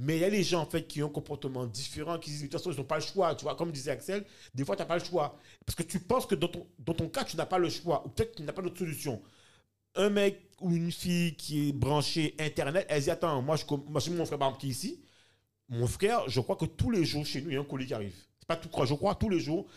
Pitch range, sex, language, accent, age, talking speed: 135-185 Hz, male, French, French, 40-59, 320 wpm